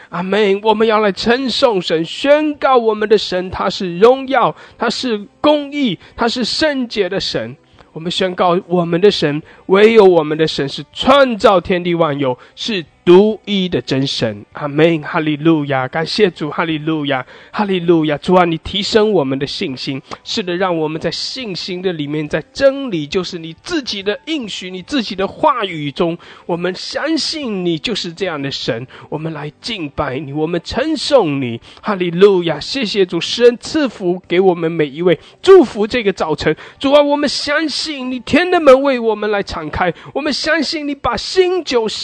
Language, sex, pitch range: English, male, 160-260 Hz